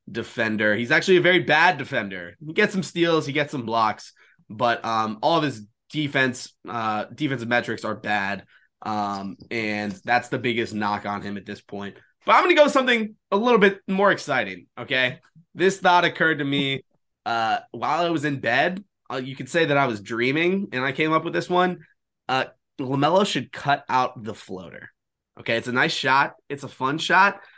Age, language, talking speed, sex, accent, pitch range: 20-39, English, 195 wpm, male, American, 115-165 Hz